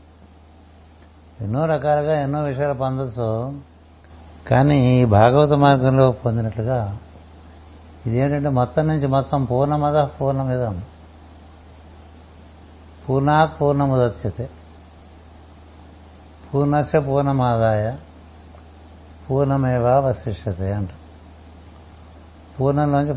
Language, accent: Telugu, native